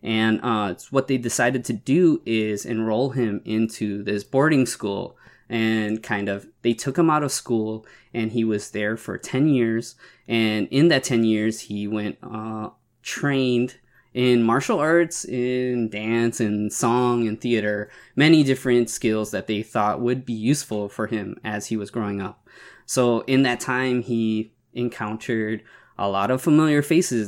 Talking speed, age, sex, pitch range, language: 165 wpm, 20-39, male, 110-130 Hz, English